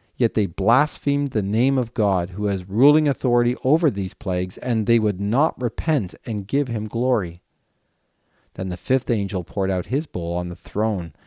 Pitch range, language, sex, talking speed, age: 95-120 Hz, English, male, 180 wpm, 40-59